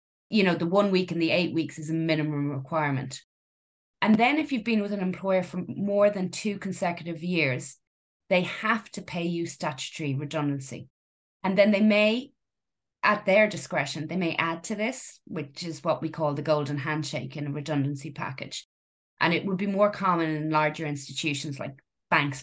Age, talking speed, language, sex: 20-39, 185 wpm, English, female